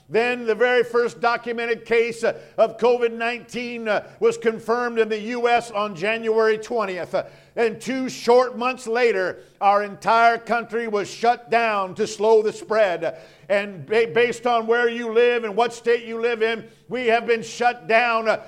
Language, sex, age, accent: English, male, 50-69, American